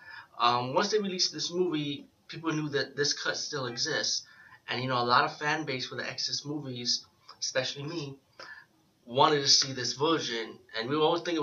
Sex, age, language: male, 20-39, English